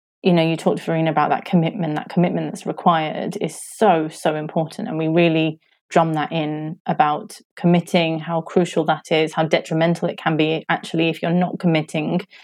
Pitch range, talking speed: 160-185 Hz, 190 wpm